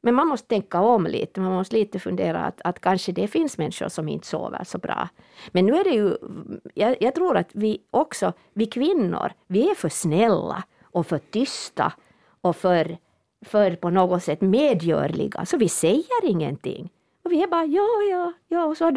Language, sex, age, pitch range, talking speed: Swedish, female, 50-69, 170-220 Hz, 195 wpm